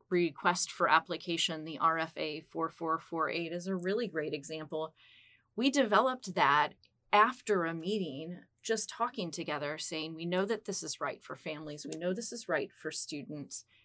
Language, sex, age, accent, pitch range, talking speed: English, female, 30-49, American, 155-195 Hz, 150 wpm